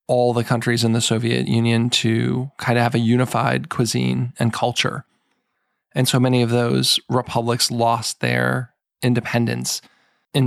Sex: male